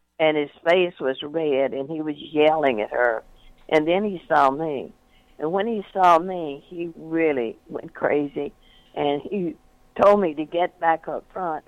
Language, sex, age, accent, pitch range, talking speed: English, female, 60-79, American, 150-200 Hz, 175 wpm